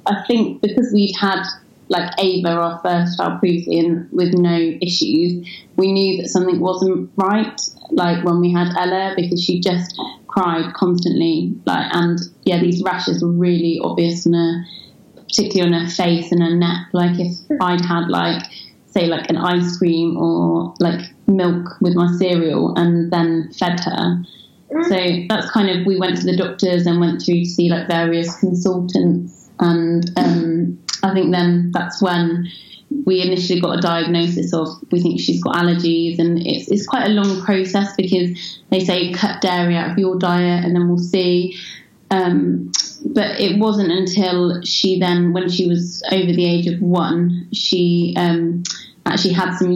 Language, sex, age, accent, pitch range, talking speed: English, female, 20-39, British, 170-185 Hz, 170 wpm